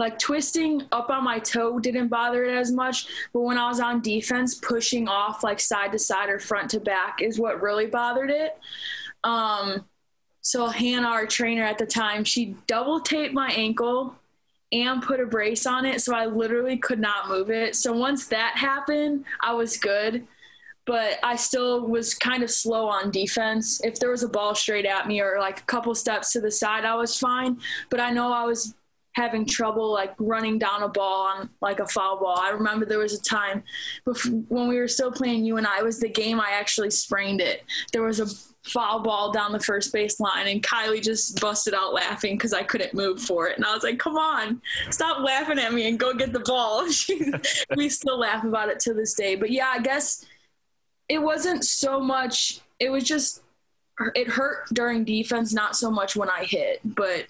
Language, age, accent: English, 20-39, American